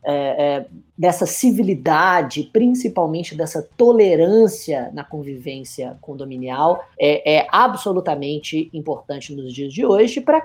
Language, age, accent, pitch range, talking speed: Portuguese, 20-39, Brazilian, 155-225 Hz, 110 wpm